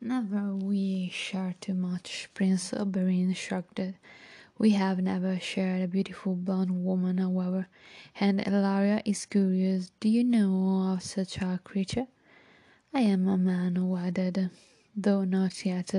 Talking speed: 135 wpm